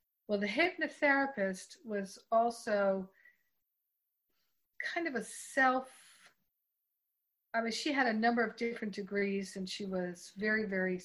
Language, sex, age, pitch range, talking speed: English, female, 40-59, 185-230 Hz, 125 wpm